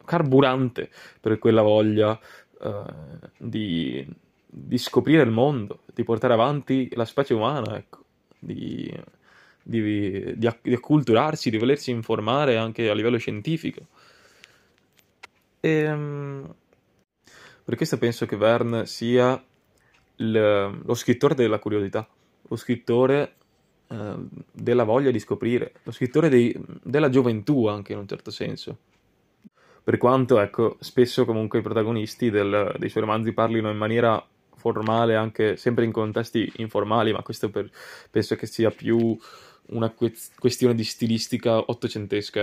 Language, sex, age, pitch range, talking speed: Italian, male, 20-39, 110-130 Hz, 125 wpm